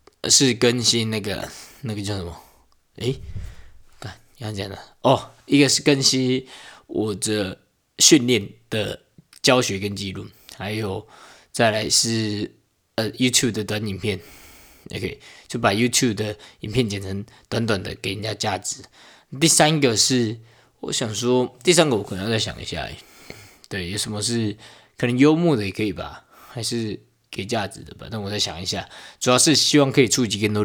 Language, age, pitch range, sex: Chinese, 20-39, 100-120 Hz, male